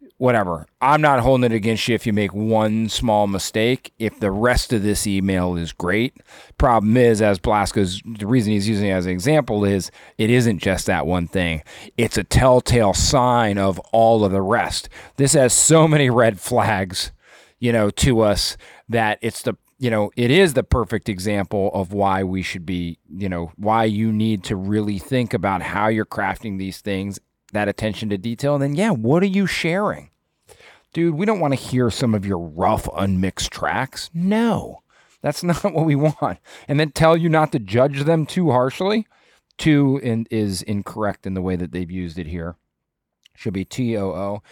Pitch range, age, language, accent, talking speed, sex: 100-130 Hz, 30-49, English, American, 195 wpm, male